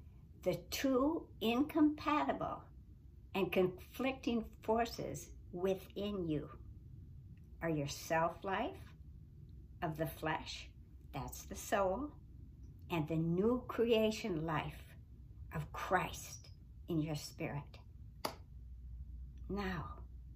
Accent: American